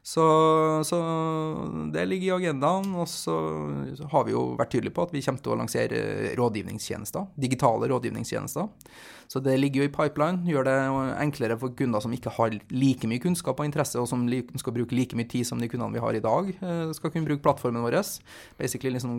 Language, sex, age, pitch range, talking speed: English, male, 20-39, 115-155 Hz, 190 wpm